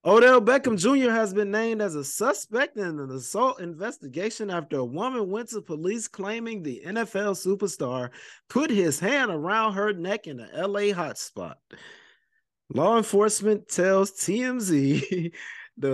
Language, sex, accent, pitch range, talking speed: English, male, American, 130-185 Hz, 145 wpm